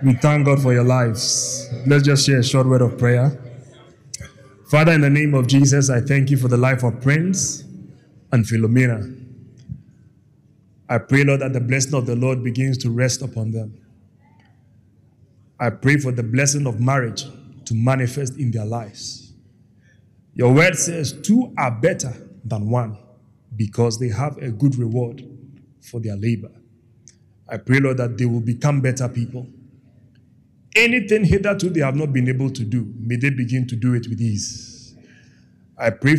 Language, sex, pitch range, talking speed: English, male, 115-140 Hz, 165 wpm